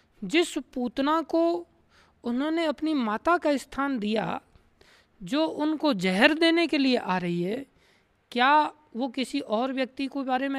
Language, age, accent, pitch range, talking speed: Hindi, 20-39, native, 220-315 Hz, 145 wpm